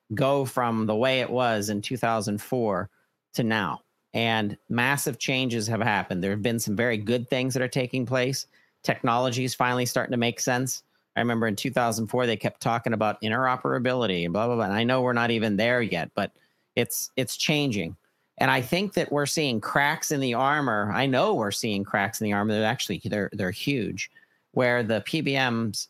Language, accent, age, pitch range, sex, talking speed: English, American, 50-69, 105-130 Hz, male, 195 wpm